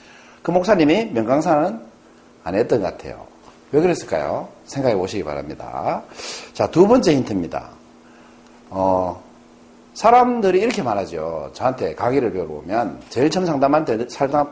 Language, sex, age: Korean, male, 40-59